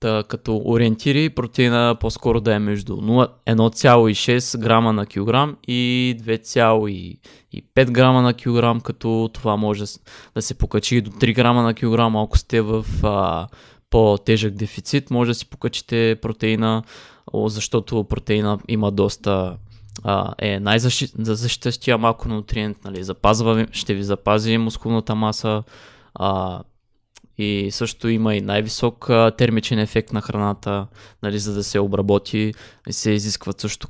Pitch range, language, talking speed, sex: 105-115 Hz, Bulgarian, 135 wpm, male